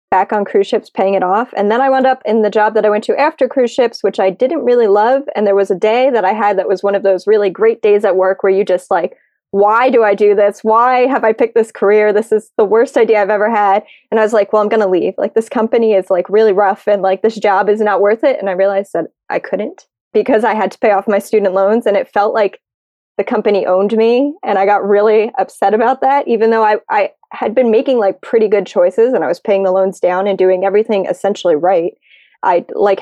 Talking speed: 265 wpm